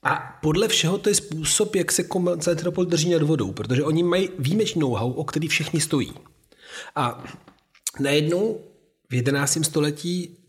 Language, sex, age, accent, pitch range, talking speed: Czech, male, 40-59, native, 130-165 Hz, 150 wpm